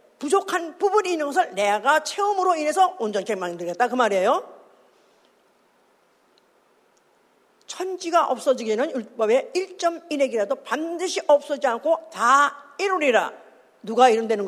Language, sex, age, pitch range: Korean, female, 50-69, 230-335 Hz